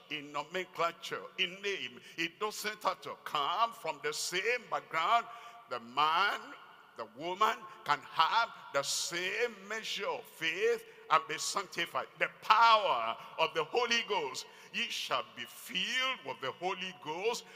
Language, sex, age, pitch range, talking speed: English, male, 50-69, 175-260 Hz, 140 wpm